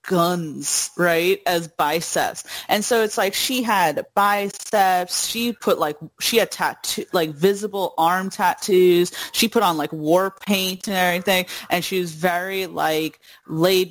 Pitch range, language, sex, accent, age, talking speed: 170-210 Hz, English, female, American, 30-49, 150 wpm